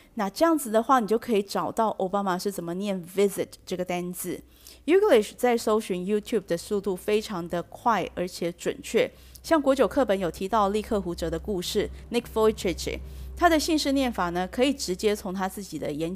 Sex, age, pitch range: female, 30-49, 185-240 Hz